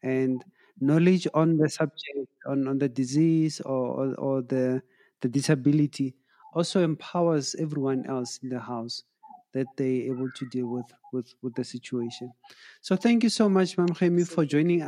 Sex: male